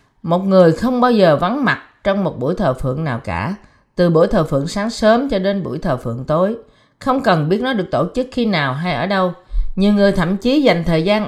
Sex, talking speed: female, 240 wpm